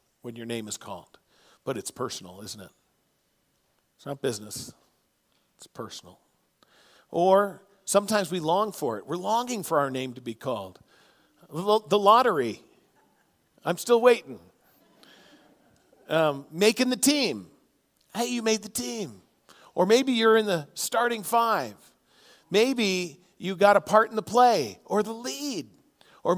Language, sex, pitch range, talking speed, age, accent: English, male, 160-215 Hz, 140 wpm, 50-69, American